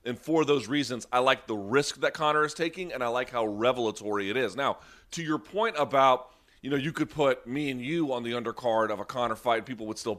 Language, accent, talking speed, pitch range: English, American, 245 wpm, 120-150 Hz